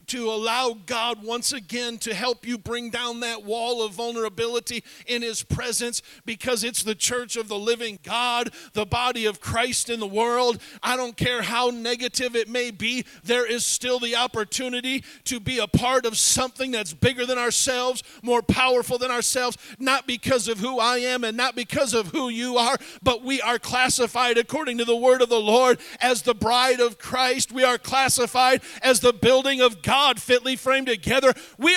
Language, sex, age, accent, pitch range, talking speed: English, male, 50-69, American, 235-270 Hz, 190 wpm